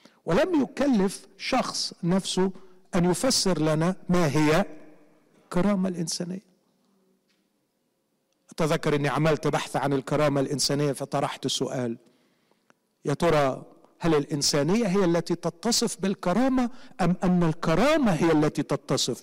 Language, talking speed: Arabic, 105 wpm